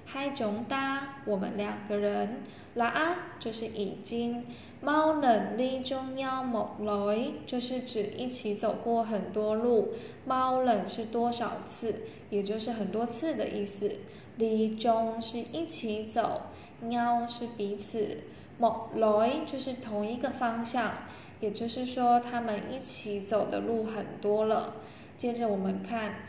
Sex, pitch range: female, 215-250 Hz